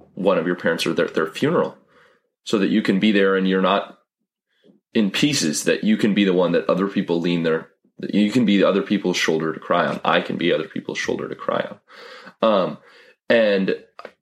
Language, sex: English, male